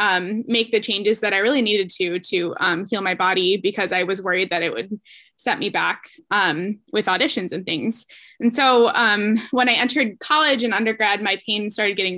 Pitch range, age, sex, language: 195-235 Hz, 10-29, female, English